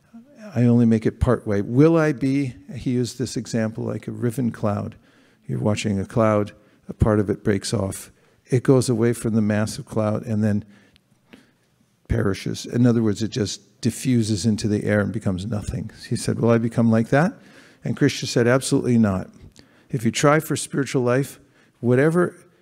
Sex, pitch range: male, 110-135 Hz